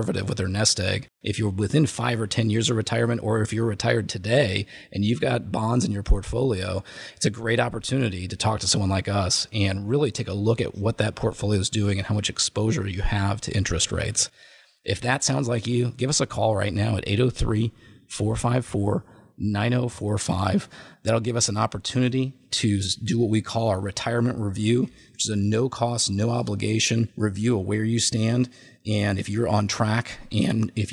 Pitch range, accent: 100-120 Hz, American